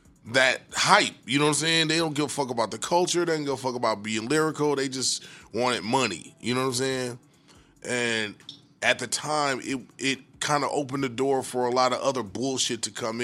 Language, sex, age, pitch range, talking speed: English, male, 20-39, 120-145 Hz, 230 wpm